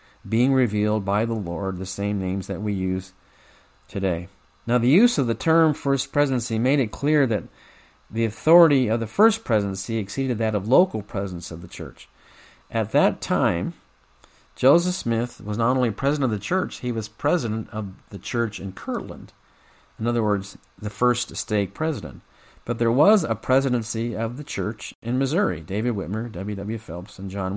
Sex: male